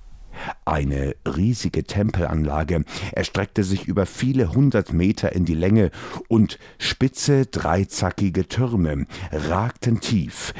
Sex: male